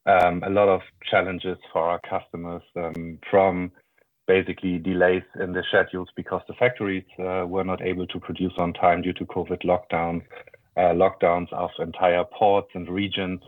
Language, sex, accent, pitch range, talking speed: English, male, German, 90-100 Hz, 165 wpm